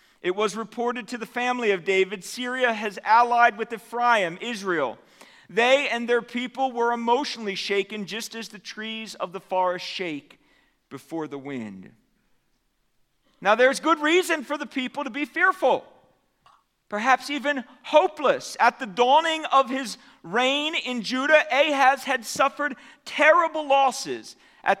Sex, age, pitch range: male, 40-59, 190-270 Hz